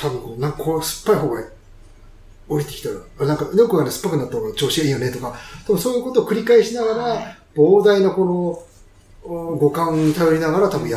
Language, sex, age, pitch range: Japanese, male, 30-49, 125-205 Hz